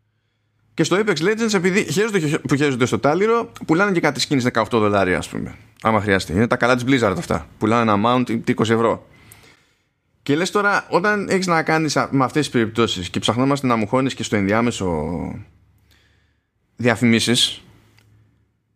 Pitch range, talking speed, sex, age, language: 110-160 Hz, 155 wpm, male, 20-39, Greek